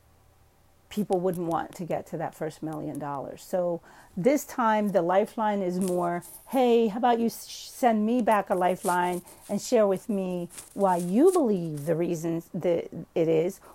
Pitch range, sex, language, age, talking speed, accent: 165-215 Hz, female, English, 40-59, 165 wpm, American